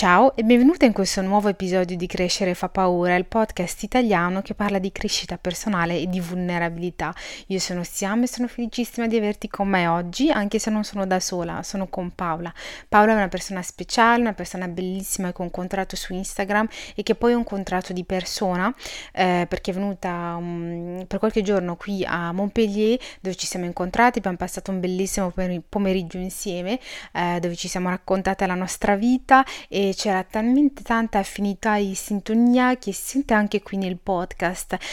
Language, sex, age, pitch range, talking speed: Italian, female, 20-39, 180-215 Hz, 180 wpm